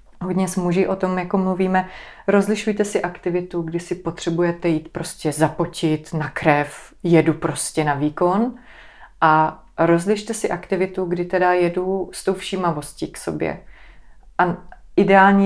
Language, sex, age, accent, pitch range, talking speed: Czech, female, 30-49, native, 170-200 Hz, 140 wpm